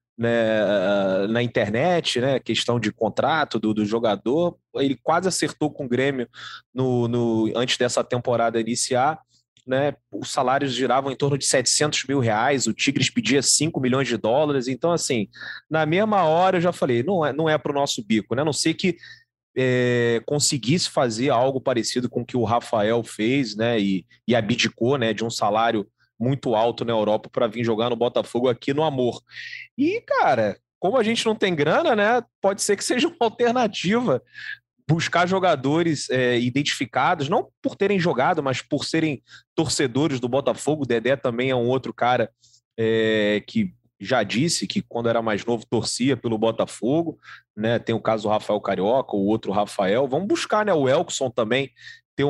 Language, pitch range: Portuguese, 115-155 Hz